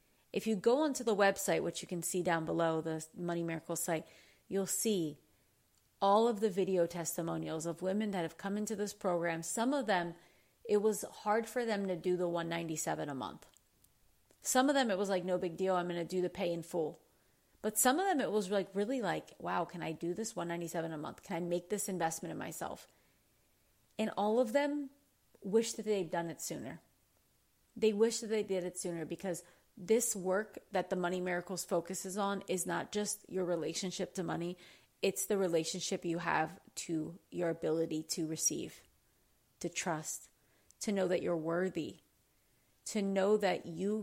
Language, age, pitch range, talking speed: English, 30-49, 170-205 Hz, 190 wpm